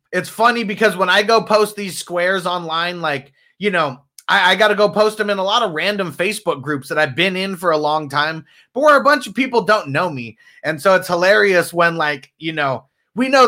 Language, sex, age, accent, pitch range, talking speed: English, male, 30-49, American, 150-210 Hz, 235 wpm